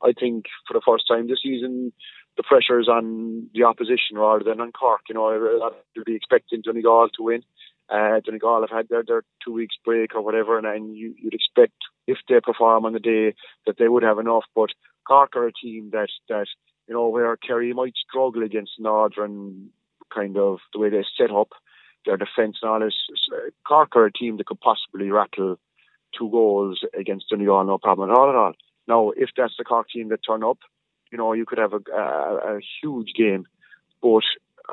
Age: 40-59